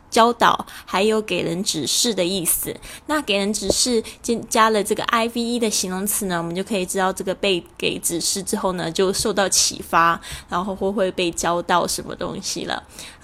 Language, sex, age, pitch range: Chinese, female, 10-29, 190-255 Hz